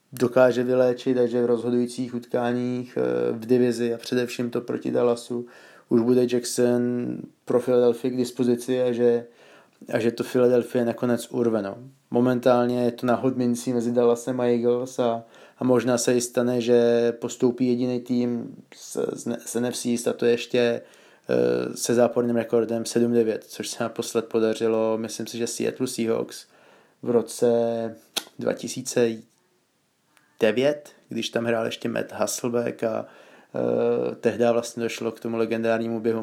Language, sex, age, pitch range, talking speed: Slovak, male, 20-39, 115-125 Hz, 140 wpm